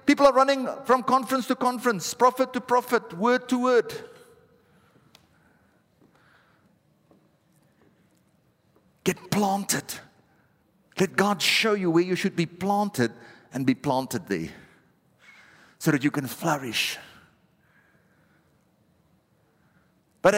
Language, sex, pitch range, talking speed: English, male, 175-235 Hz, 100 wpm